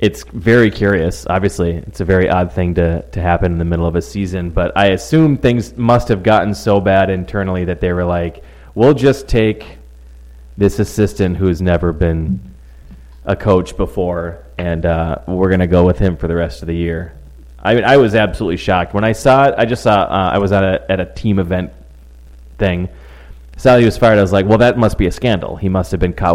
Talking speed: 220 wpm